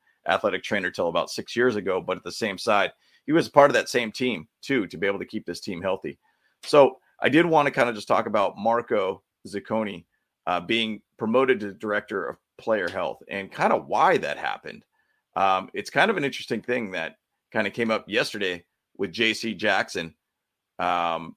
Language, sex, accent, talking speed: English, male, American, 200 wpm